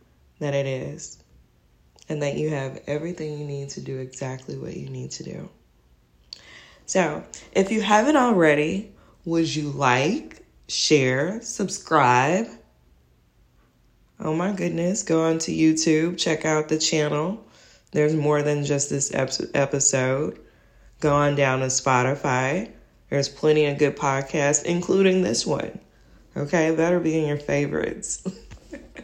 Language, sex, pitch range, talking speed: English, female, 135-185 Hz, 130 wpm